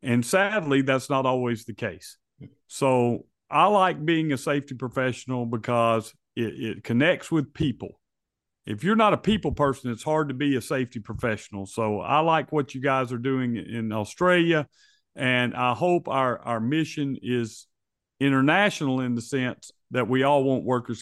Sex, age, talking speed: male, 50-69, 170 wpm